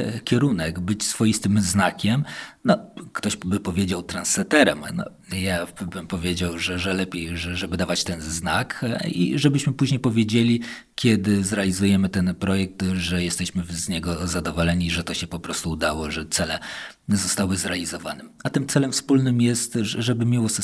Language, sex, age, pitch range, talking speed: Polish, male, 40-59, 95-115 Hz, 150 wpm